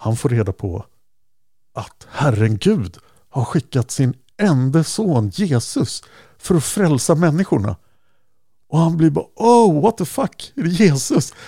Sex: male